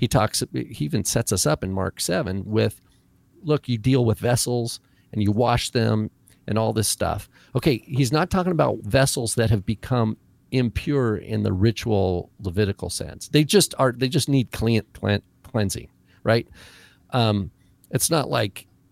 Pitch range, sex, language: 95-125 Hz, male, English